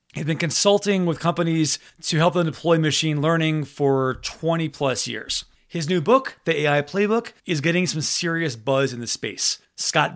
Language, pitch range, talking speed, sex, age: English, 135-175 Hz, 185 wpm, male, 30-49